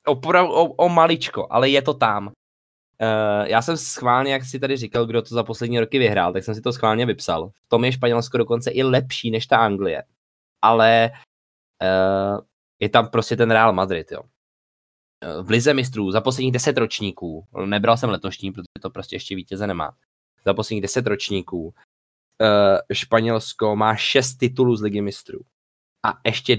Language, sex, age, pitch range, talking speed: English, male, 20-39, 95-120 Hz, 175 wpm